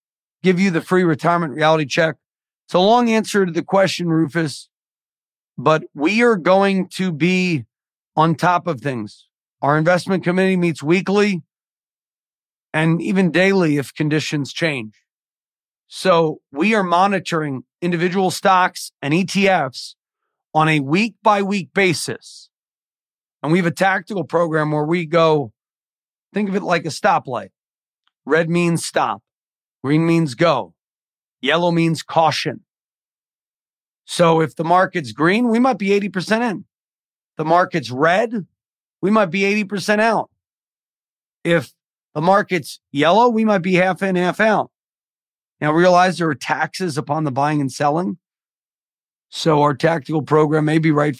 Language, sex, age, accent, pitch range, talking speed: English, male, 40-59, American, 155-185 Hz, 140 wpm